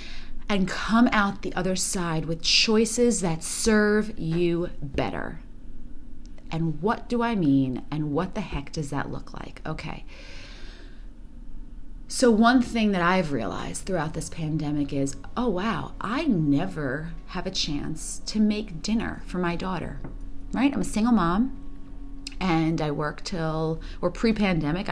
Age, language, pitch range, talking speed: 30-49, English, 155-210 Hz, 145 wpm